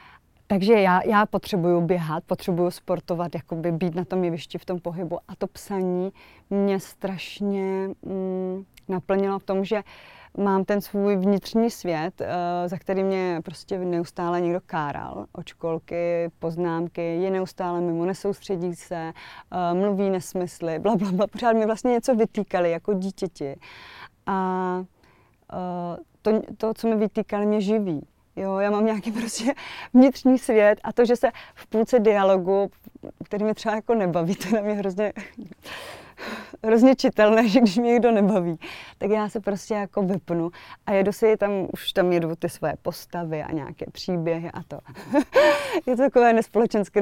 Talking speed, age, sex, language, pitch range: 155 wpm, 30-49, female, Slovak, 175-215 Hz